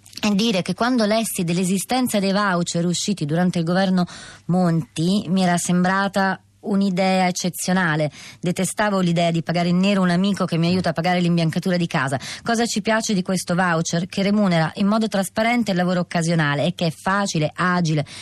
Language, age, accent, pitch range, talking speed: Italian, 20-39, native, 160-200 Hz, 175 wpm